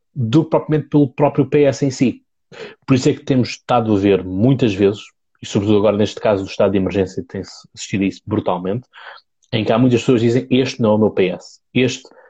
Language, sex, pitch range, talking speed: Portuguese, male, 110-135 Hz, 225 wpm